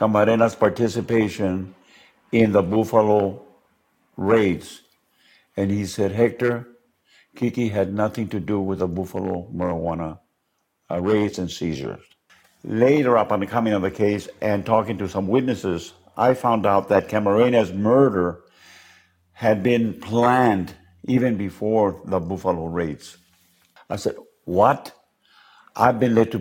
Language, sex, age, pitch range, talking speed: English, male, 60-79, 95-115 Hz, 125 wpm